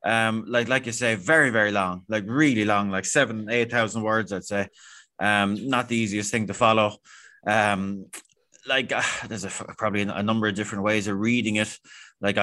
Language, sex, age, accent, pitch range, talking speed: English, male, 20-39, Irish, 100-115 Hz, 190 wpm